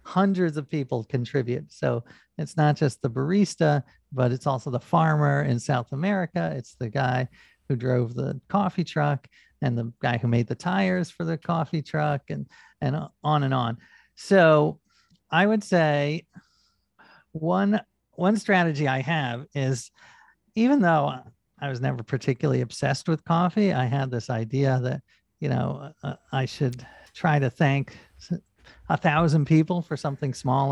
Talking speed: 155 wpm